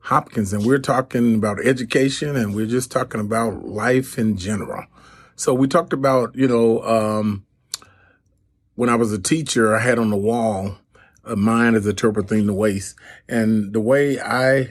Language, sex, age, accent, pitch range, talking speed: English, male, 30-49, American, 105-120 Hz, 175 wpm